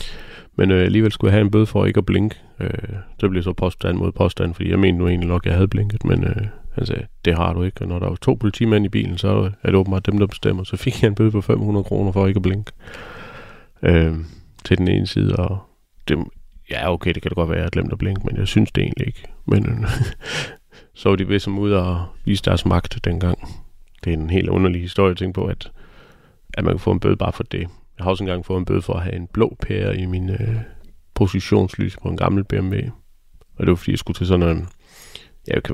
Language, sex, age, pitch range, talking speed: Danish, male, 30-49, 90-105 Hz, 255 wpm